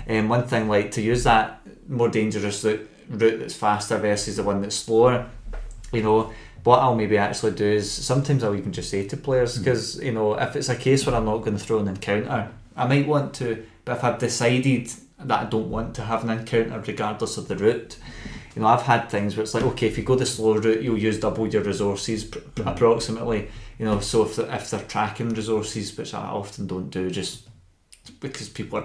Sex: male